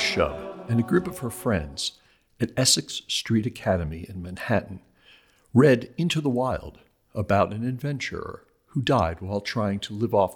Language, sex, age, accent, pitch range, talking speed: English, male, 60-79, American, 90-125 Hz, 155 wpm